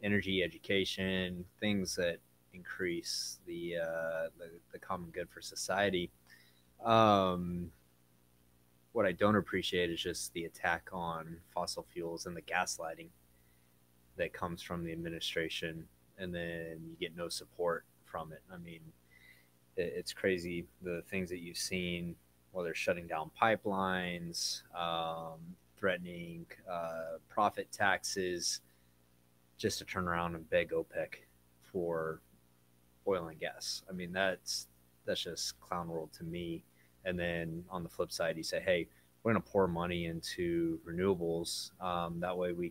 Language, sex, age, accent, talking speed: English, male, 20-39, American, 140 wpm